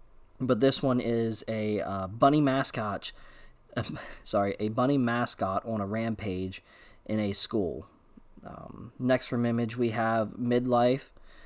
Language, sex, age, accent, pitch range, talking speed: English, male, 20-39, American, 105-125 Hz, 130 wpm